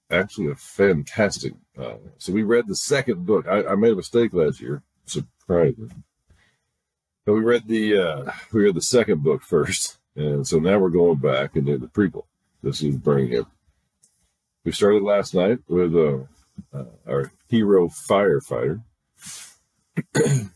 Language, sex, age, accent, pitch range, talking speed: English, male, 50-69, American, 75-115 Hz, 150 wpm